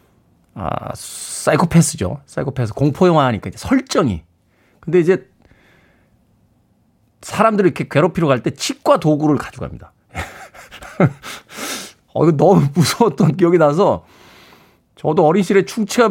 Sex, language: male, Korean